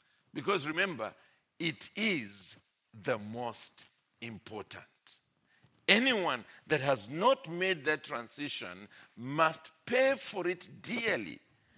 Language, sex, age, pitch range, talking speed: English, male, 50-69, 110-165 Hz, 95 wpm